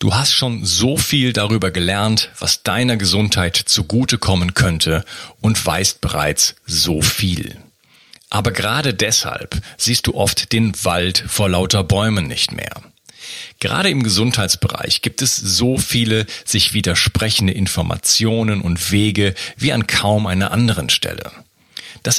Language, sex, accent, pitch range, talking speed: German, male, German, 95-125 Hz, 135 wpm